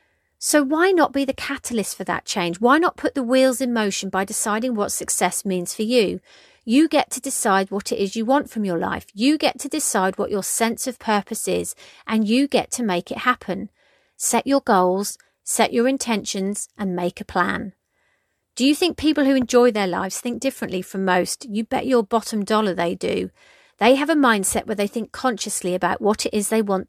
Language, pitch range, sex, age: English, 195-270 Hz, female, 40-59